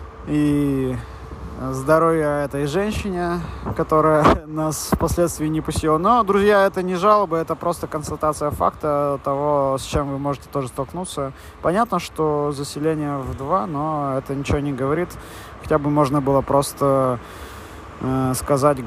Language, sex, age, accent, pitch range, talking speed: Russian, male, 20-39, native, 120-155 Hz, 135 wpm